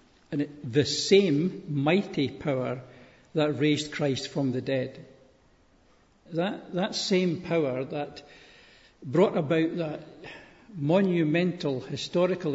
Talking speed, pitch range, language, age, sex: 100 wpm, 130-165 Hz, English, 60-79, male